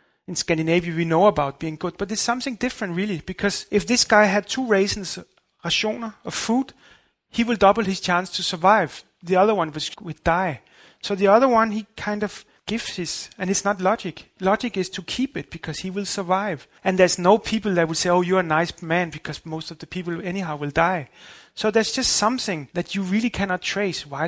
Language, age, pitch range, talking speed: English, 30-49, 170-210 Hz, 210 wpm